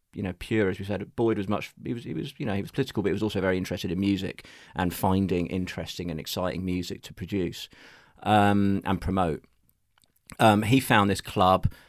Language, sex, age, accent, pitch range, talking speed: English, male, 30-49, British, 90-110 Hz, 210 wpm